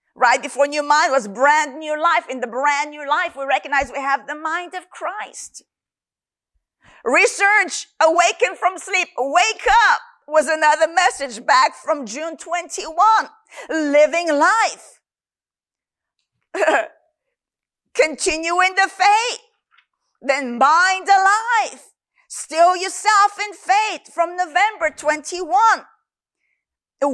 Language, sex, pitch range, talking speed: English, female, 285-380 Hz, 115 wpm